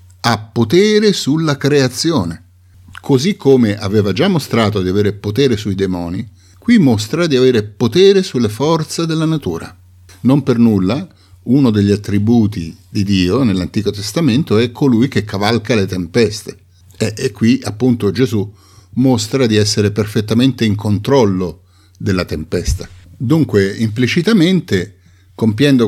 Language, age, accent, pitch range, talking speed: Italian, 50-69, native, 95-130 Hz, 130 wpm